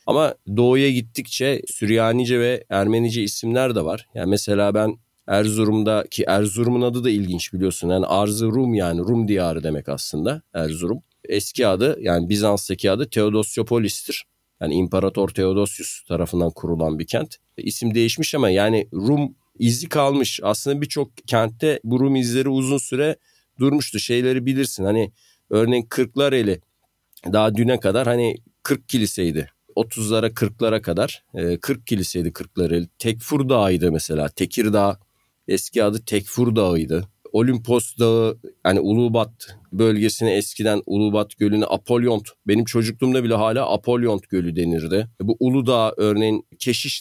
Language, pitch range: Turkish, 100-125 Hz